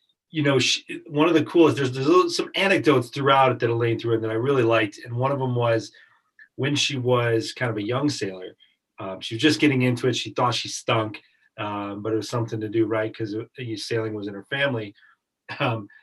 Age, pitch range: 30-49, 110-130 Hz